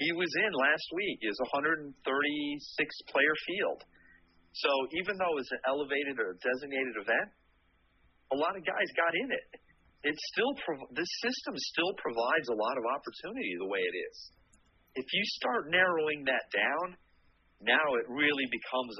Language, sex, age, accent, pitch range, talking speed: English, male, 40-59, American, 110-145 Hz, 155 wpm